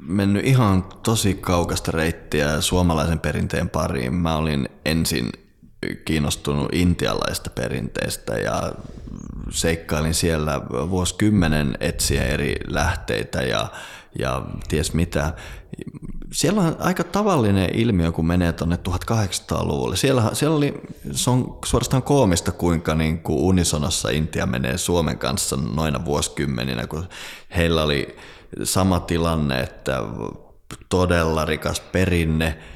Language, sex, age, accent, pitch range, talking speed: Finnish, male, 20-39, native, 80-95 Hz, 110 wpm